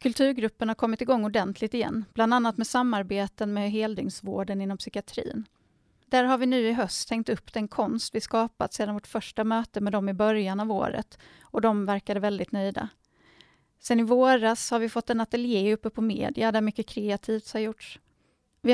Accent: native